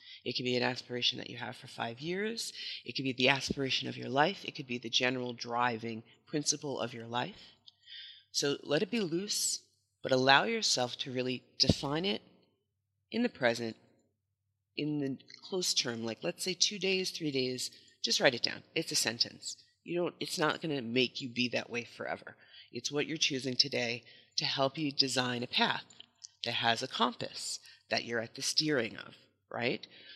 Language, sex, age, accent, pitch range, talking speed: English, female, 30-49, American, 120-155 Hz, 190 wpm